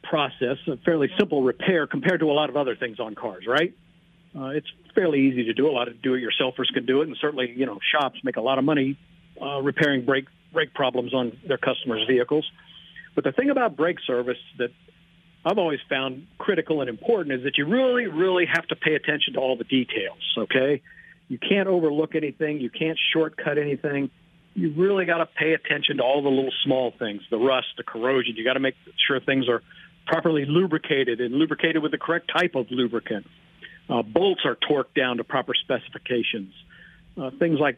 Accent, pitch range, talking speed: American, 130-170 Hz, 200 wpm